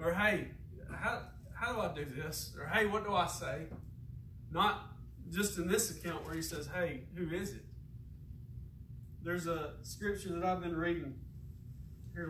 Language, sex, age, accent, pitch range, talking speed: English, male, 30-49, American, 125-170 Hz, 165 wpm